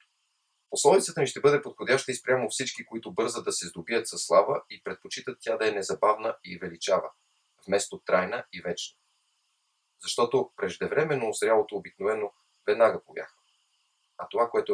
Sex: male